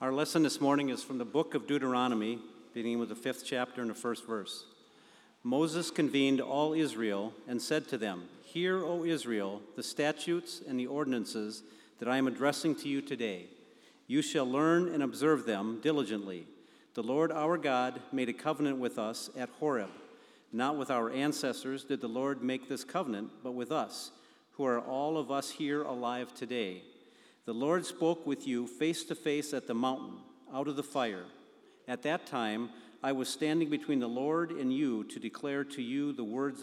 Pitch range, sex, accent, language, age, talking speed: 120-150 Hz, male, American, English, 50-69, 185 wpm